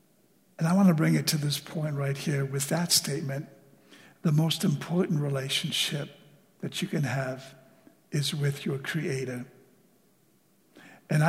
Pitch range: 145-175 Hz